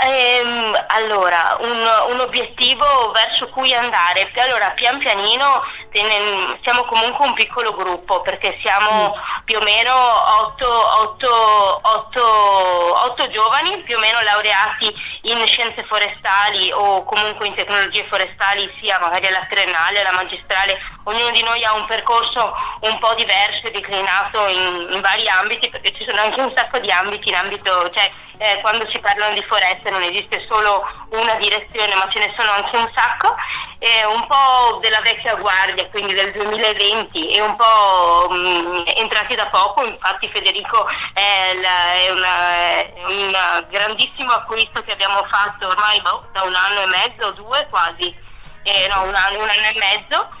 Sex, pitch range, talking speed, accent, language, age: female, 195-230 Hz, 155 wpm, native, Italian, 20-39